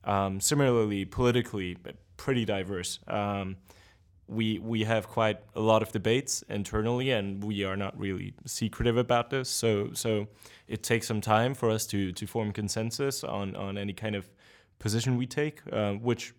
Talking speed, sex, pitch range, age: 170 wpm, male, 100-115 Hz, 20-39